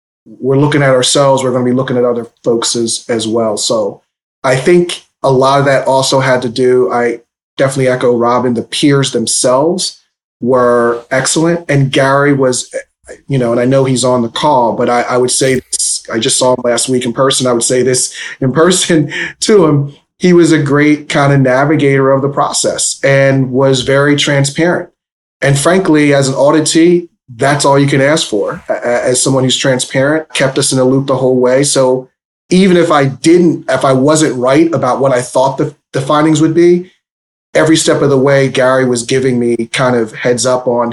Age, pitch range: 30-49, 125-145 Hz